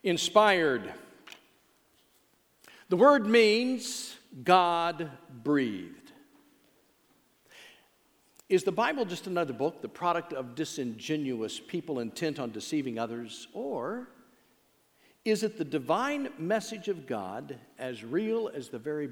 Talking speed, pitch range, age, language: 105 wpm, 115-195 Hz, 50-69, English